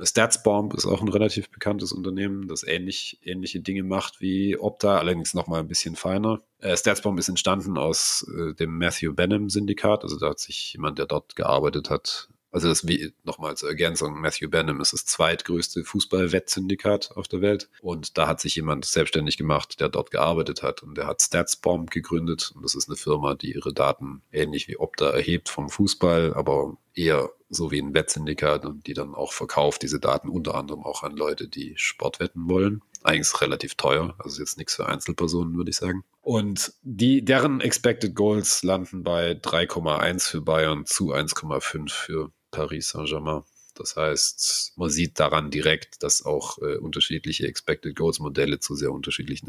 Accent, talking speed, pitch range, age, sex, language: German, 175 wpm, 80-100 Hz, 40-59, male, English